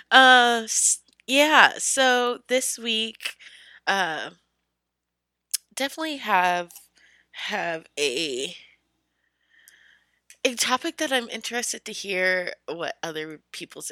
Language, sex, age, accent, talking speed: English, female, 20-39, American, 85 wpm